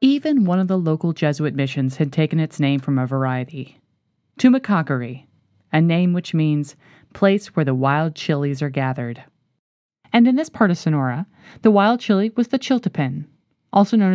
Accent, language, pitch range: American, English, 155-230 Hz